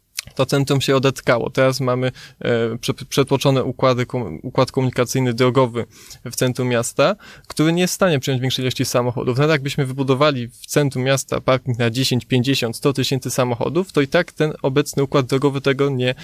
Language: Polish